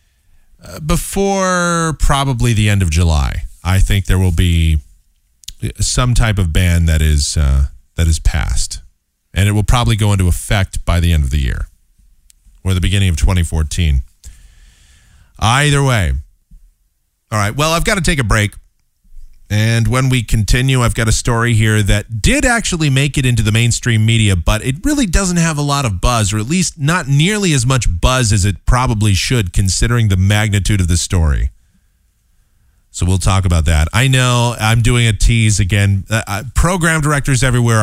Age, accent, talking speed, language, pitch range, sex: 30-49, American, 175 wpm, English, 80-120 Hz, male